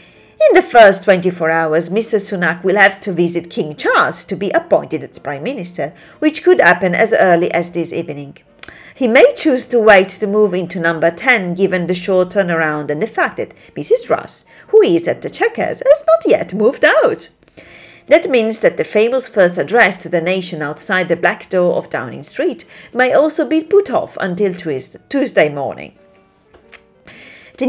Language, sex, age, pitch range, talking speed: English, female, 40-59, 175-275 Hz, 180 wpm